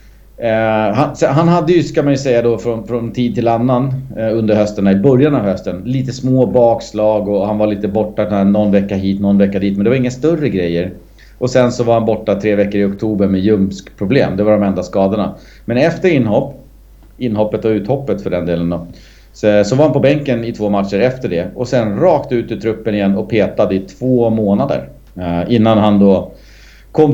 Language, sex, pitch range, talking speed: Swedish, male, 100-120 Hz, 205 wpm